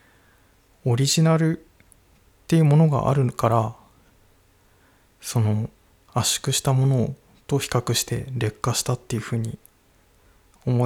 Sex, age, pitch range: male, 20-39, 95-130 Hz